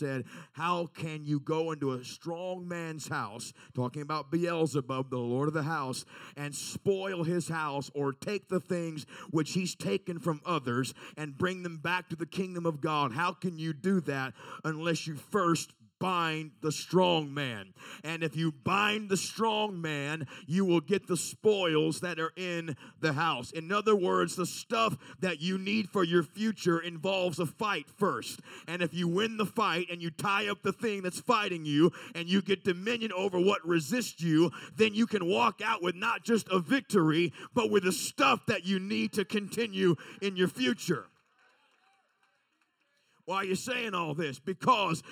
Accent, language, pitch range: American, English, 160-210 Hz